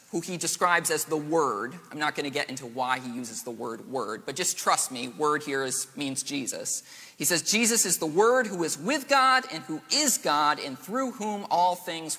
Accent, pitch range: American, 120-180 Hz